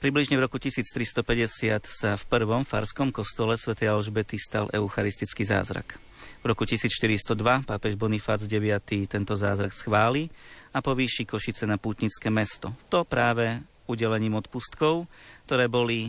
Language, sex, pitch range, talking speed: Slovak, male, 105-130 Hz, 130 wpm